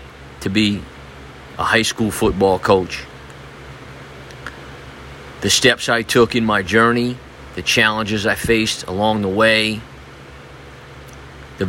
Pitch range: 70-110 Hz